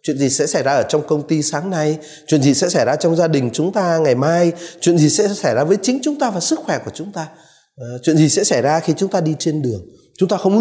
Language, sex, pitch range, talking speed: Vietnamese, male, 135-200 Hz, 295 wpm